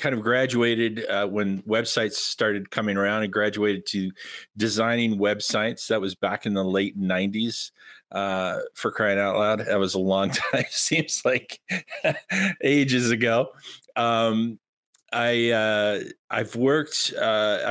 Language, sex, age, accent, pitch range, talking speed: English, male, 50-69, American, 105-120 Hz, 140 wpm